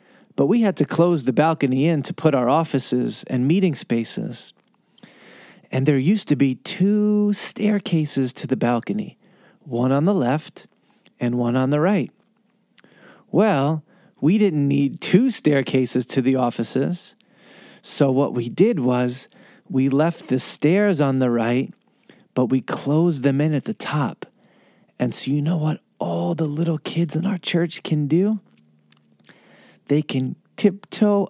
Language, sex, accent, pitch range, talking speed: English, male, American, 140-200 Hz, 155 wpm